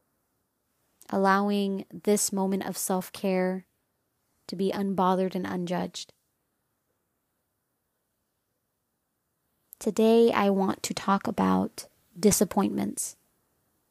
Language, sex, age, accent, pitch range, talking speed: English, female, 20-39, American, 185-210 Hz, 75 wpm